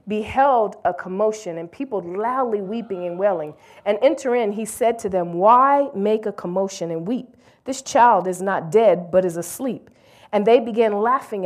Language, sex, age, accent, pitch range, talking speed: English, female, 40-59, American, 180-230 Hz, 175 wpm